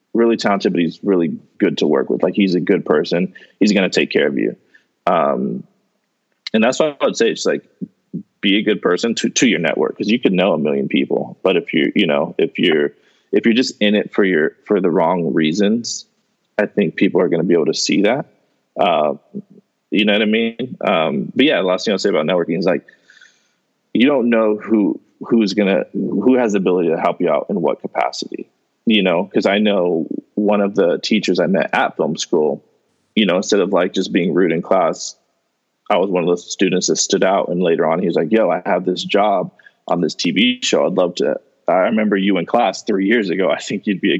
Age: 20-39